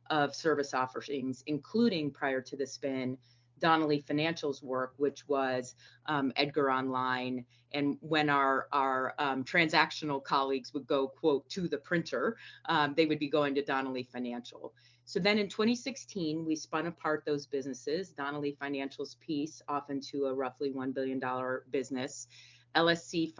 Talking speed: 145 wpm